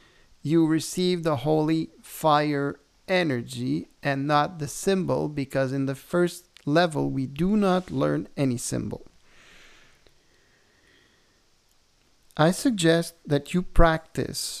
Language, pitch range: English, 145-170 Hz